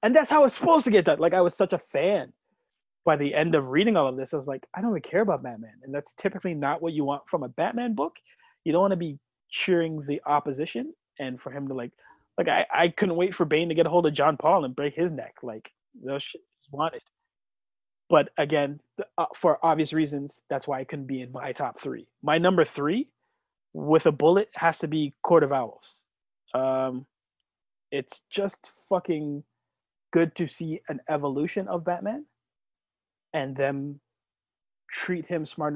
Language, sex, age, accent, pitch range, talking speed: English, male, 20-39, American, 135-175 Hz, 200 wpm